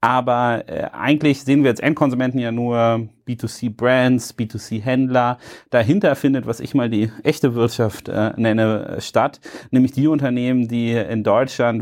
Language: German